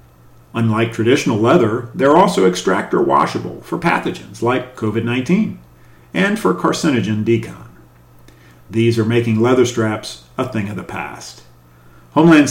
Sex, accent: male, American